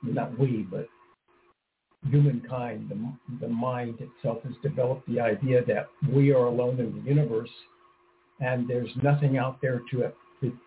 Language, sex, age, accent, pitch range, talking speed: English, male, 60-79, American, 125-145 Hz, 145 wpm